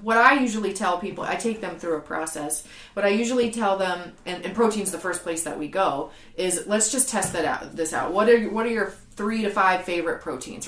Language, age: English, 30-49